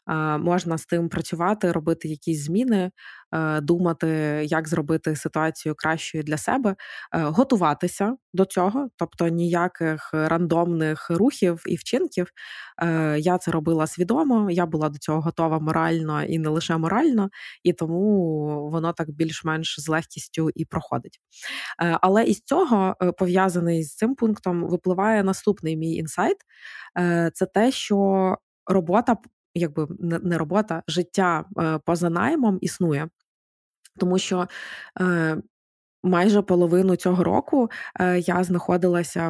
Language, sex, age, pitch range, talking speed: Ukrainian, female, 20-39, 165-185 Hz, 120 wpm